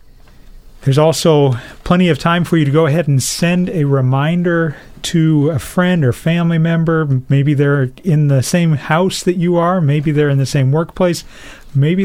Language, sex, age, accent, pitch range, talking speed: English, male, 40-59, American, 135-170 Hz, 180 wpm